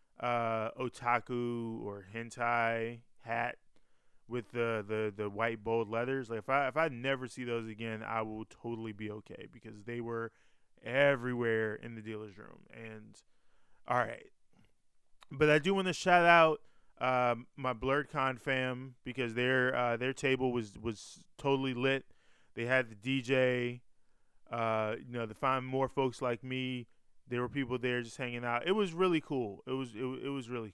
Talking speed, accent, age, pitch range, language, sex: 170 wpm, American, 20-39, 115-135 Hz, English, male